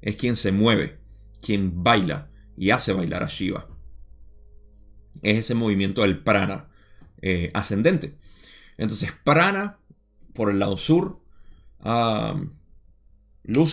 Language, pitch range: Spanish, 100-125 Hz